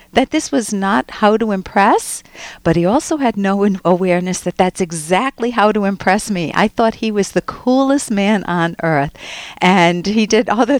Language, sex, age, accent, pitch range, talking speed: English, female, 50-69, American, 160-220 Hz, 185 wpm